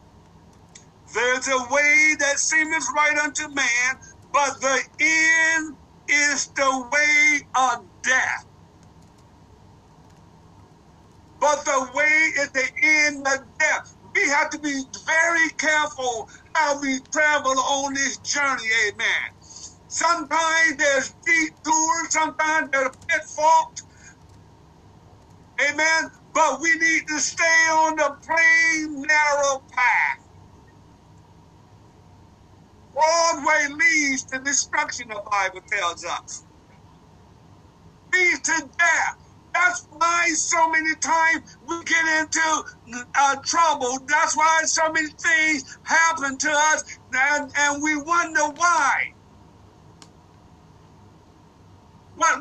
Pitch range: 280-320 Hz